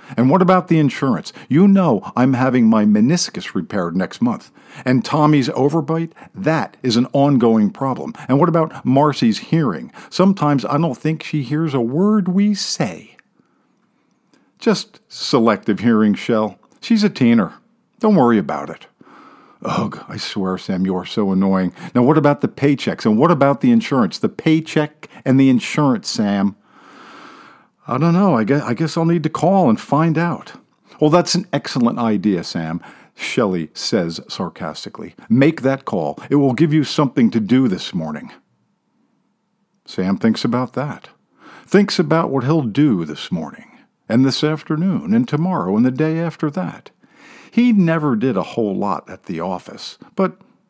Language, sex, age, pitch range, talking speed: English, male, 50-69, 130-200 Hz, 160 wpm